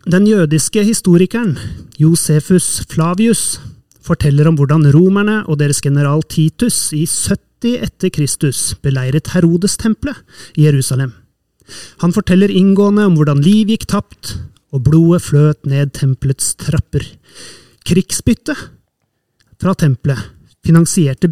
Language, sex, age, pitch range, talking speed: English, male, 30-49, 140-185 Hz, 110 wpm